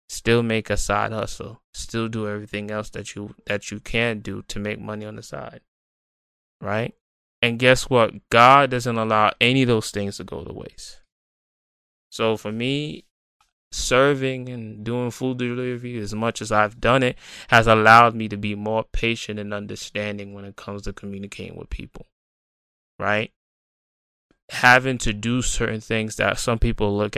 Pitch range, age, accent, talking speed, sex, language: 105-115 Hz, 20-39, American, 170 wpm, male, English